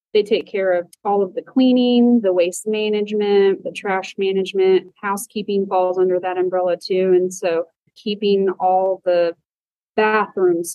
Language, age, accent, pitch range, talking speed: English, 30-49, American, 185-215 Hz, 145 wpm